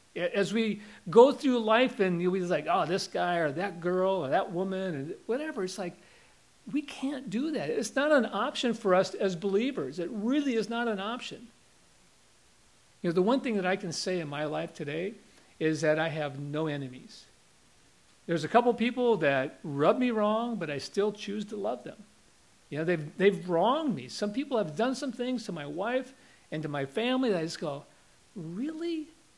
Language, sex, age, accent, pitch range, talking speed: English, male, 50-69, American, 170-230 Hz, 200 wpm